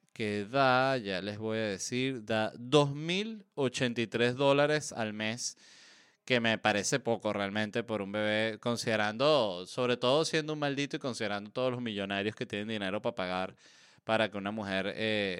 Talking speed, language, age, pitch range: 160 wpm, Spanish, 20-39, 105-135 Hz